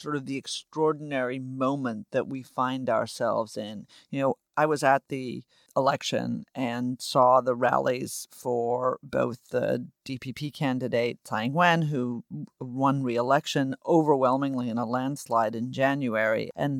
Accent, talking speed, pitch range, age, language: American, 135 wpm, 125-145 Hz, 40-59, English